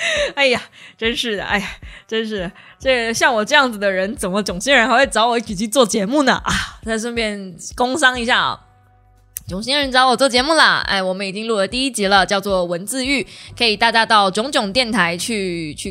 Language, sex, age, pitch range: Chinese, female, 20-39, 190-260 Hz